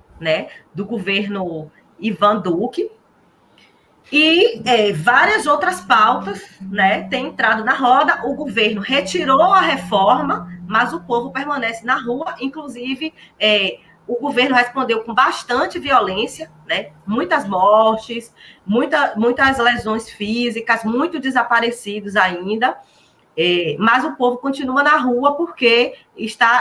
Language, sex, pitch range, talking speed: Portuguese, female, 220-280 Hz, 115 wpm